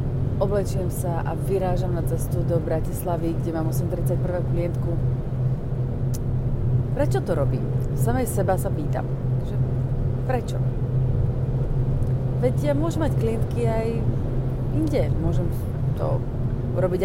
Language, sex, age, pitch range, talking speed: Slovak, female, 30-49, 125-145 Hz, 105 wpm